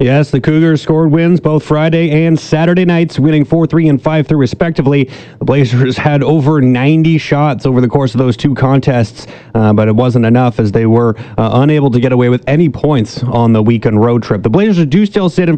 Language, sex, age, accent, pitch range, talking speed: English, male, 30-49, American, 125-155 Hz, 210 wpm